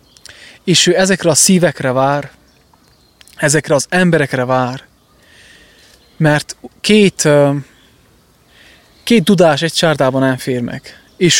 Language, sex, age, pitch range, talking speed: English, male, 20-39, 140-175 Hz, 100 wpm